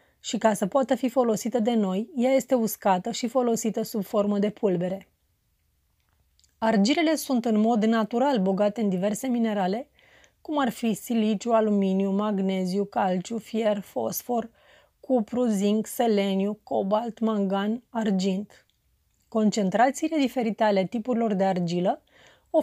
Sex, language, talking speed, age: female, Romanian, 125 wpm, 30-49